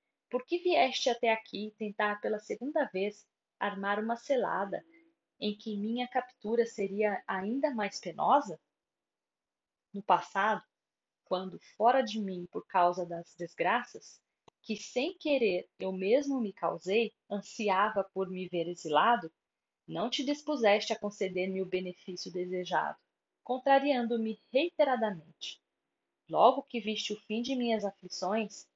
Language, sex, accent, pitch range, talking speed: Portuguese, female, Brazilian, 190-245 Hz, 125 wpm